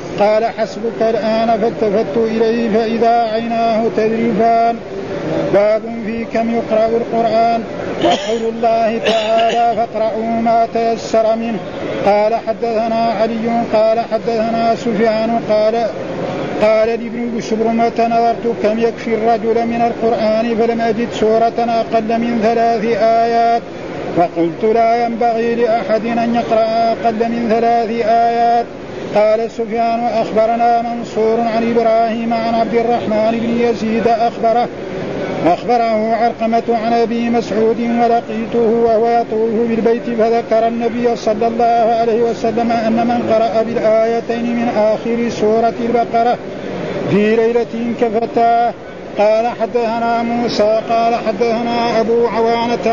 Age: 50-69